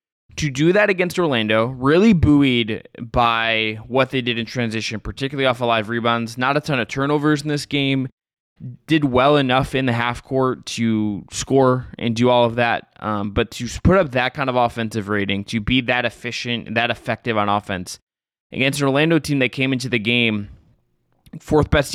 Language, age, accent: English, 20-39, American